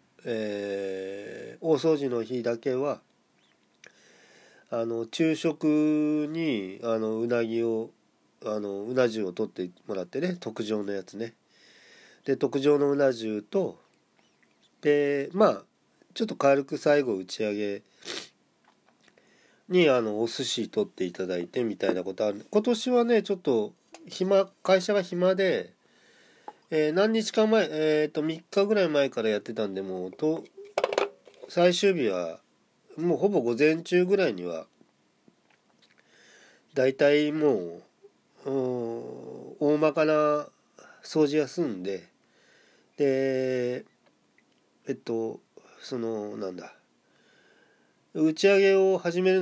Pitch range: 110-180 Hz